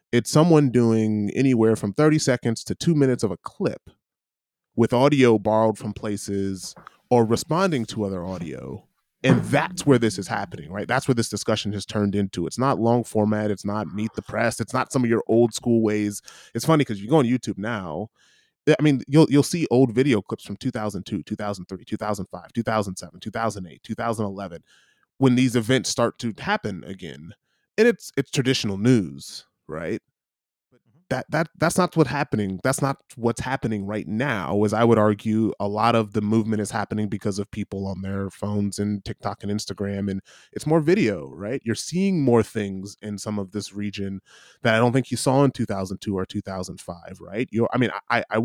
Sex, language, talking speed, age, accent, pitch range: male, English, 190 wpm, 30-49, American, 105-125 Hz